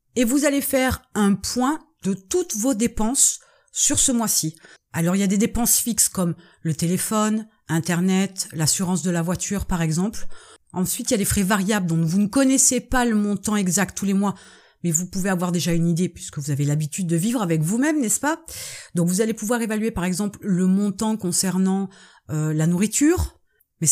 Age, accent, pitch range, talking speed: 30-49, French, 175-220 Hz, 200 wpm